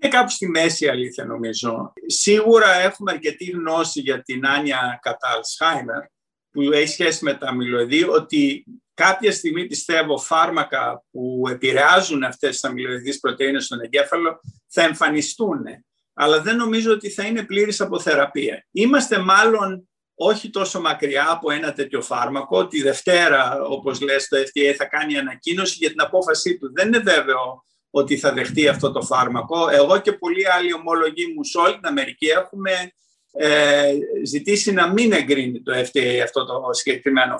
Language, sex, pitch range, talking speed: Greek, male, 140-215 Hz, 150 wpm